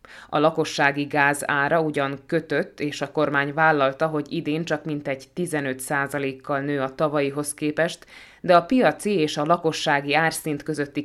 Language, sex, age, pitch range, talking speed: Hungarian, female, 20-39, 140-160 Hz, 140 wpm